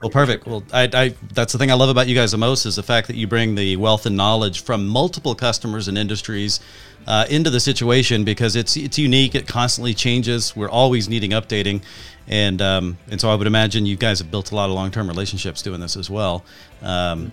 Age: 40-59